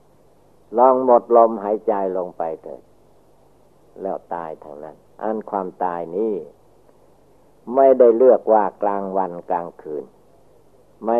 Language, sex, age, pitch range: Thai, male, 60-79, 95-110 Hz